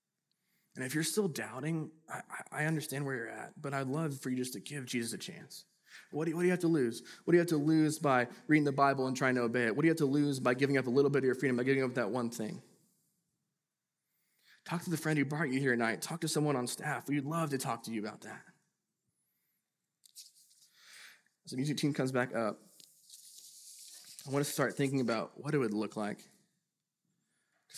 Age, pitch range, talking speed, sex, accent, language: 20-39, 130-165 Hz, 230 wpm, male, American, English